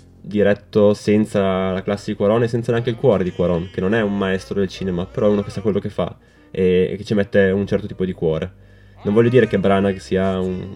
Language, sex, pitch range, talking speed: Italian, male, 95-105 Hz, 245 wpm